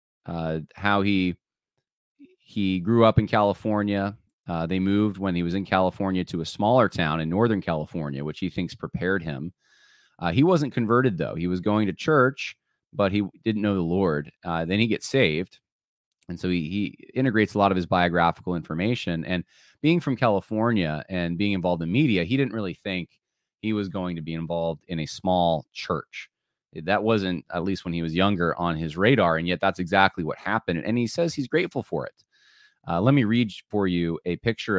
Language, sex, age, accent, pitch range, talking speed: English, male, 30-49, American, 85-110 Hz, 200 wpm